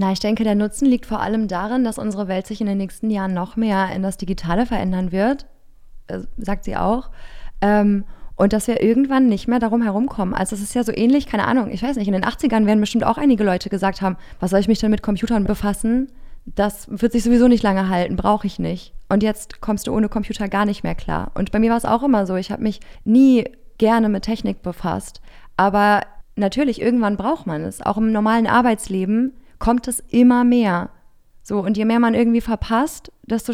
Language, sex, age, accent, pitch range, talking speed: German, female, 20-39, German, 195-230 Hz, 220 wpm